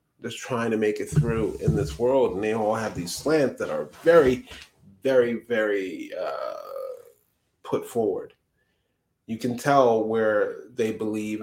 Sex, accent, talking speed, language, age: male, American, 150 wpm, English, 30-49